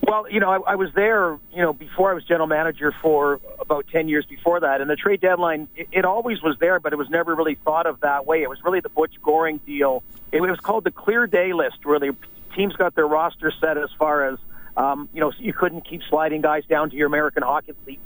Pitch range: 145-170 Hz